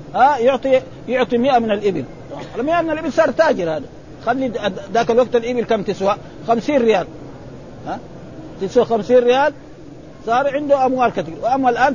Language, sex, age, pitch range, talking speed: Arabic, male, 50-69, 185-255 Hz, 145 wpm